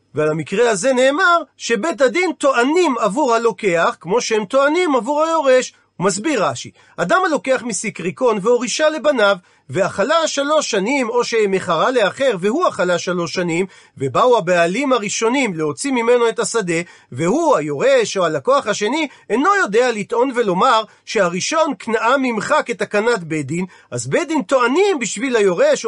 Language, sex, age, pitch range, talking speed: Hebrew, male, 40-59, 200-275 Hz, 135 wpm